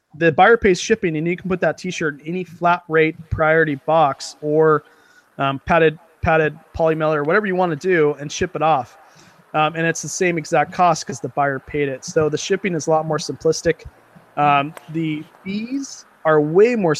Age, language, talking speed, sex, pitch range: 20-39, English, 200 wpm, male, 145-170 Hz